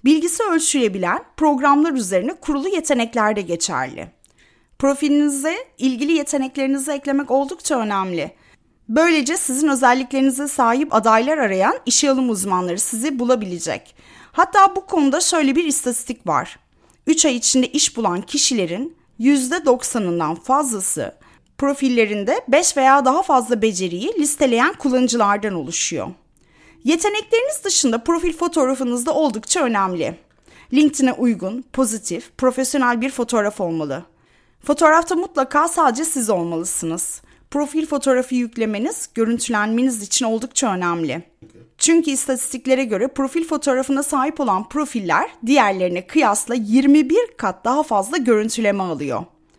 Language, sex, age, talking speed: Turkish, female, 30-49, 110 wpm